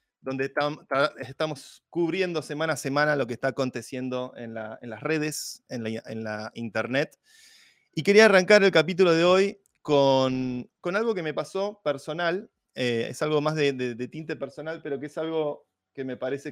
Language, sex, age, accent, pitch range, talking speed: Spanish, male, 20-39, Argentinian, 125-160 Hz, 175 wpm